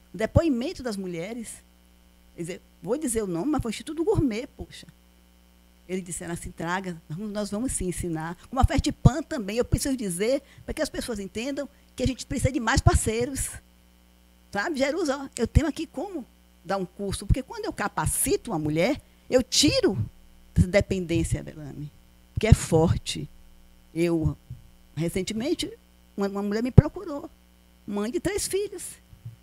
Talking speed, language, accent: 155 wpm, Portuguese, Brazilian